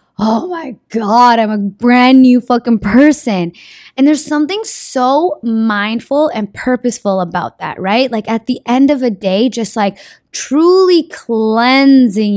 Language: English